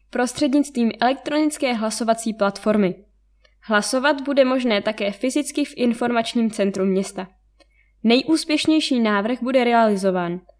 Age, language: 20-39, Czech